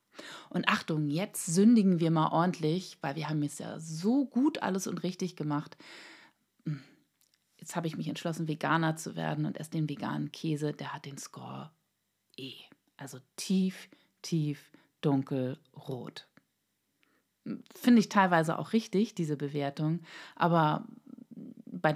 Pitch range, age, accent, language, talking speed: 155-205 Hz, 30-49, German, German, 135 wpm